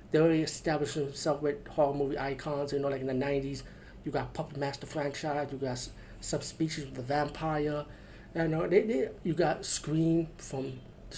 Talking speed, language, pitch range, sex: 180 wpm, English, 140-170 Hz, male